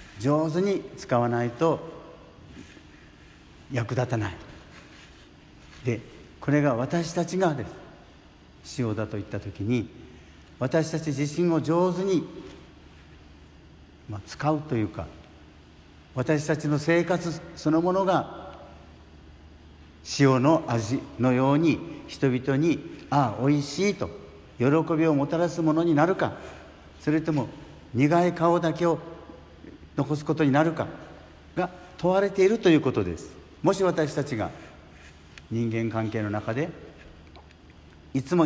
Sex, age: male, 60-79